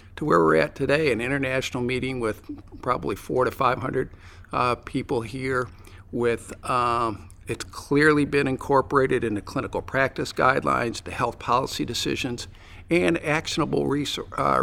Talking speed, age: 135 wpm, 50-69